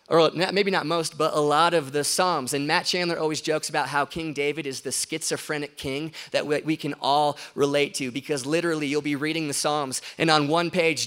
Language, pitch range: English, 150-200 Hz